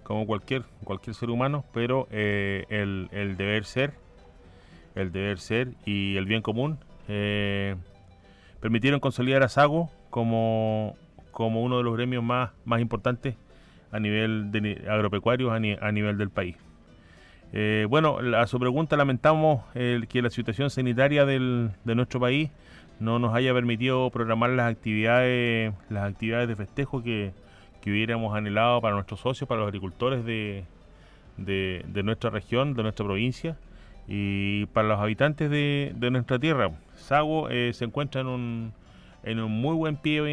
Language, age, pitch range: Spanish, 30-49, 100-125 Hz